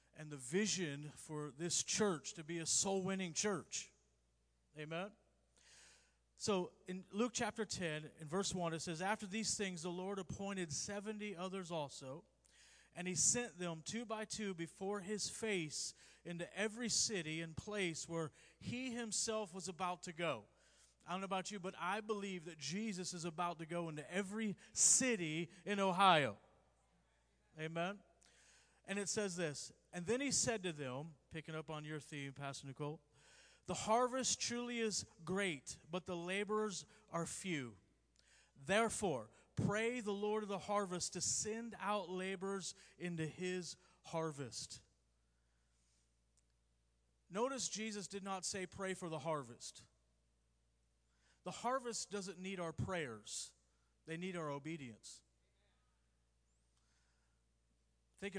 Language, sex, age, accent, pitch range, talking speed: English, male, 40-59, American, 145-205 Hz, 140 wpm